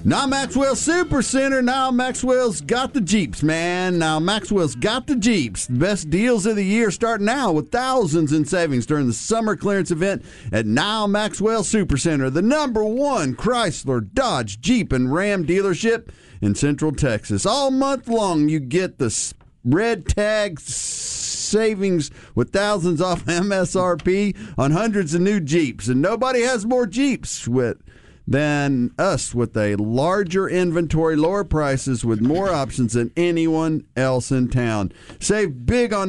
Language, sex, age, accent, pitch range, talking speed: English, male, 50-69, American, 135-210 Hz, 150 wpm